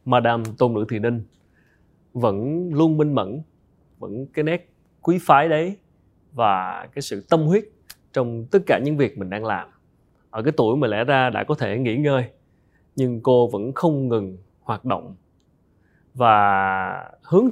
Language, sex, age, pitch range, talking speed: Vietnamese, male, 20-39, 110-160 Hz, 165 wpm